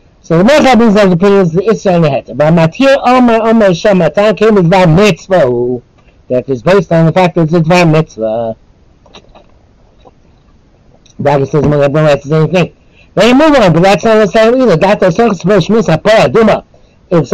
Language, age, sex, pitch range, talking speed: English, 60-79, male, 165-220 Hz, 150 wpm